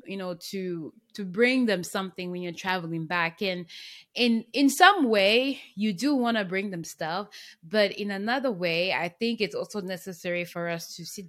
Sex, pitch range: female, 170-205 Hz